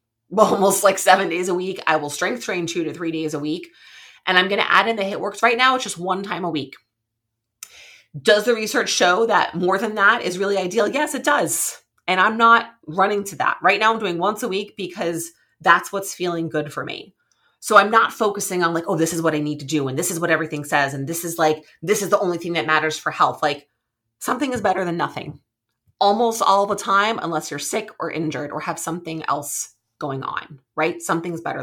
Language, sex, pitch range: English, female, 155-205 Hz